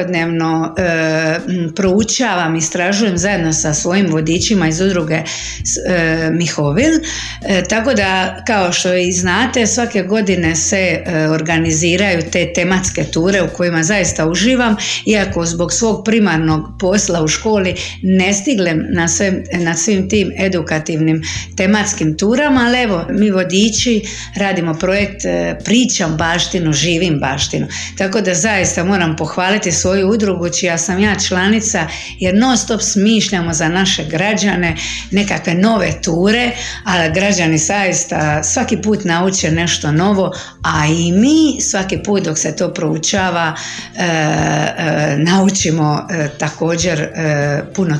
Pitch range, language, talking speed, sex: 165-205 Hz, Croatian, 135 wpm, female